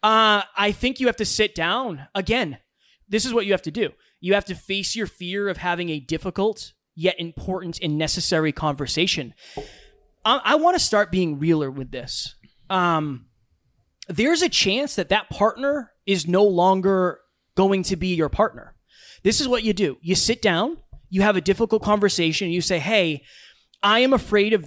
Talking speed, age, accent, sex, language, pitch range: 185 wpm, 20-39, American, male, English, 165-220 Hz